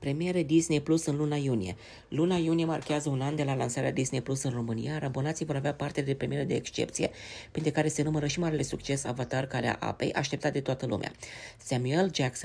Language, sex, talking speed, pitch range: Romanian, female, 210 wpm, 120-150 Hz